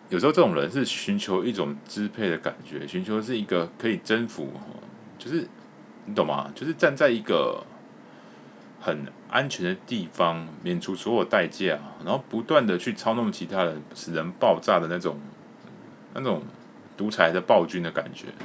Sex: male